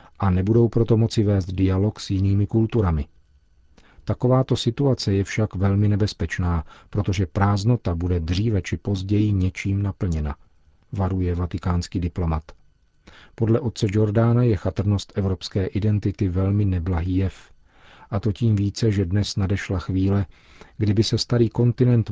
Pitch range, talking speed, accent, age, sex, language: 90-105 Hz, 130 wpm, native, 40-59, male, Czech